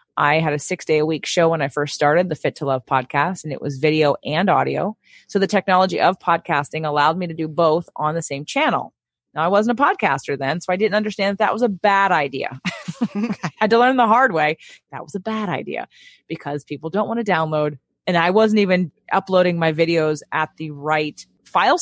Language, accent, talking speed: English, American, 215 wpm